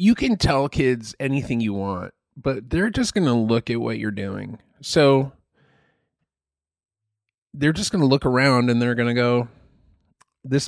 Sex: male